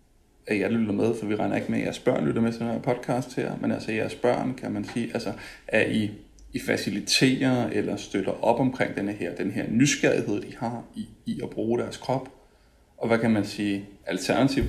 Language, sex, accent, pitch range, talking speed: Danish, male, native, 105-130 Hz, 220 wpm